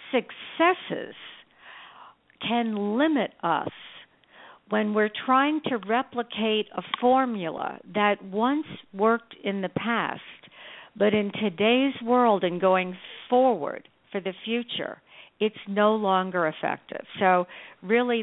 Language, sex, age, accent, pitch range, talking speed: English, female, 60-79, American, 175-230 Hz, 110 wpm